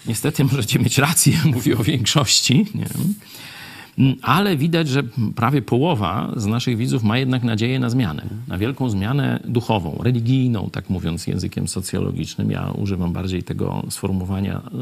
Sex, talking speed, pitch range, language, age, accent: male, 140 wpm, 105-140 Hz, Polish, 50-69, native